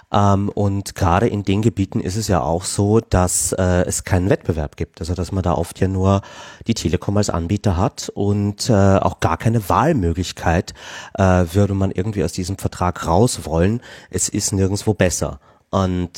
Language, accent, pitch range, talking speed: German, German, 95-115 Hz, 180 wpm